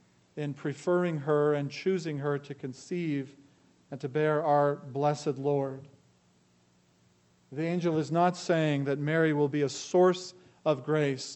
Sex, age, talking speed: male, 40-59, 145 wpm